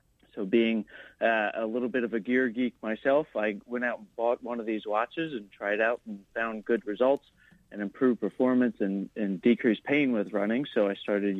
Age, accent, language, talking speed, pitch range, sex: 30-49, American, English, 205 wpm, 105-120 Hz, male